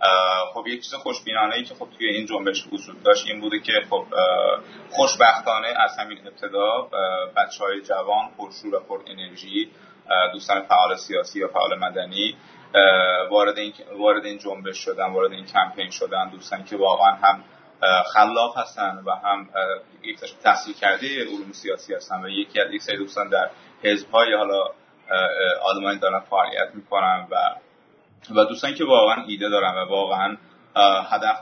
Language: English